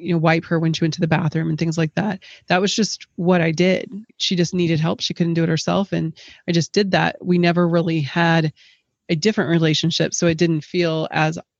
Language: English